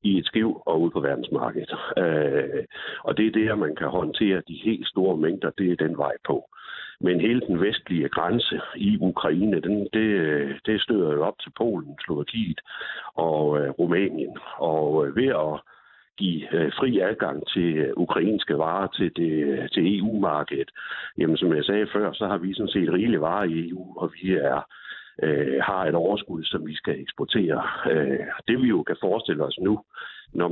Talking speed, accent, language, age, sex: 175 wpm, native, Danish, 60-79, male